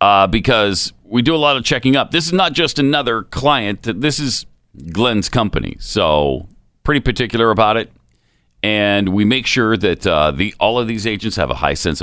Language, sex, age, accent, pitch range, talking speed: English, male, 40-59, American, 85-130 Hz, 190 wpm